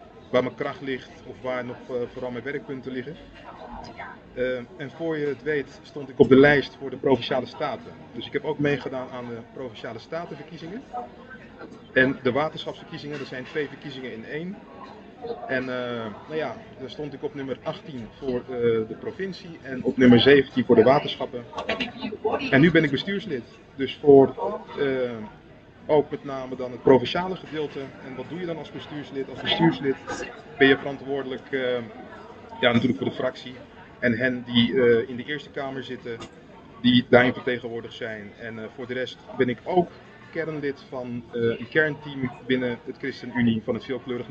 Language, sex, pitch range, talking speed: Dutch, male, 125-150 Hz, 175 wpm